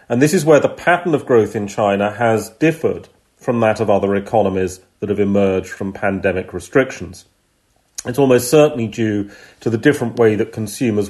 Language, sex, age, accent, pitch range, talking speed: English, male, 40-59, British, 100-125 Hz, 180 wpm